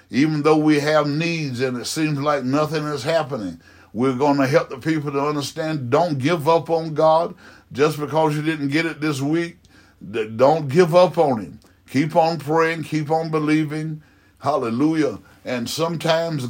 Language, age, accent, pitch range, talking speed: English, 60-79, American, 130-155 Hz, 170 wpm